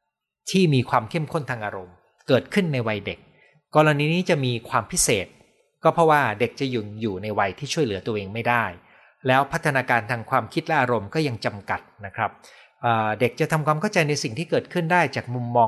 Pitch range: 115-150 Hz